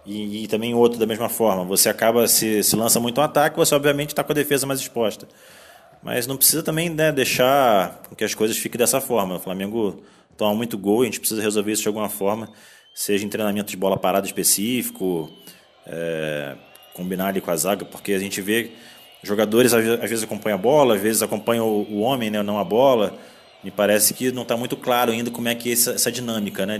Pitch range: 100-120 Hz